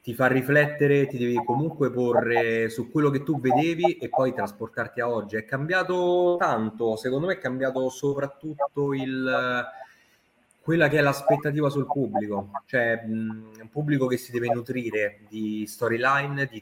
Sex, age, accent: male, 20-39, native